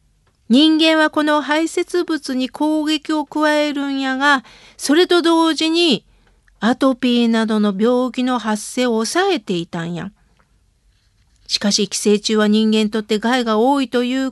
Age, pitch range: 50-69, 220-295 Hz